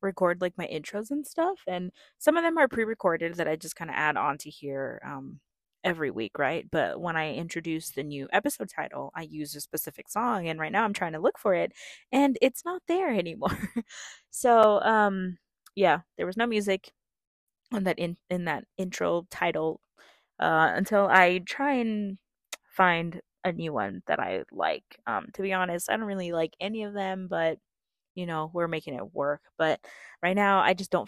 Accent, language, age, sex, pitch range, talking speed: American, English, 20-39, female, 165-215 Hz, 195 wpm